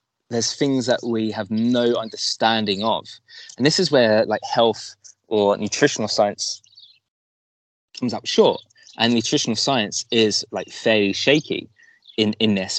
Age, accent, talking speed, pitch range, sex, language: 20-39, British, 145 wpm, 100-120 Hz, male, English